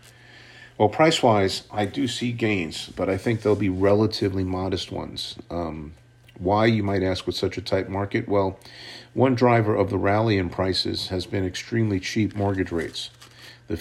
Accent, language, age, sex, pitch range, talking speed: American, English, 50-69, male, 95-120 Hz, 170 wpm